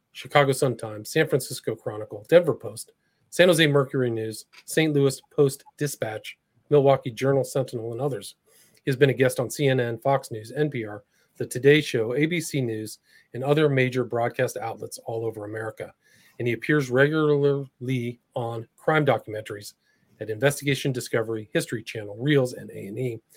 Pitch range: 115-140 Hz